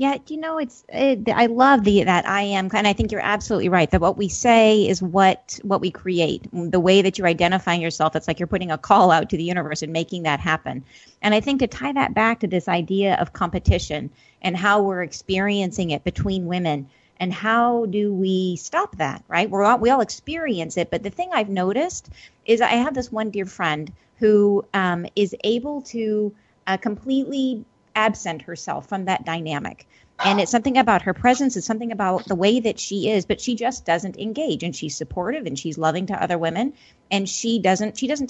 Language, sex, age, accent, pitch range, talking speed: English, female, 30-49, American, 180-240 Hz, 210 wpm